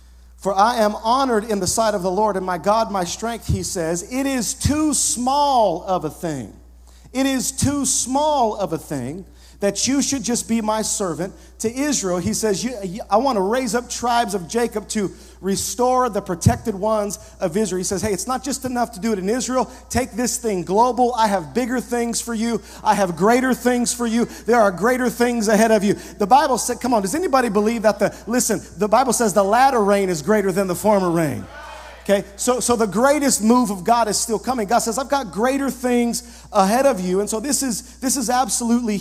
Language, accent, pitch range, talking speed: English, American, 200-250 Hz, 215 wpm